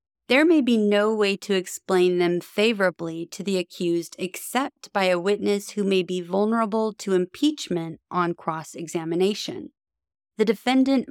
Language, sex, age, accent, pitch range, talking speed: English, female, 30-49, American, 175-215 Hz, 140 wpm